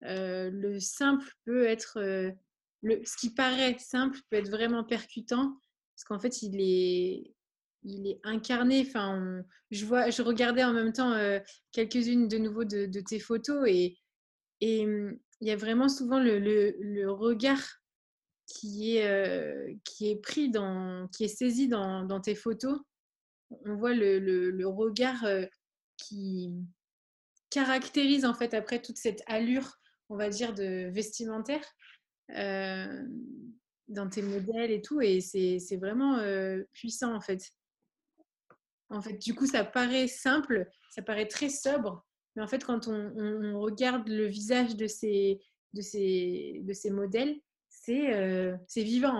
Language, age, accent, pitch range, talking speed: French, 20-39, French, 200-245 Hz, 160 wpm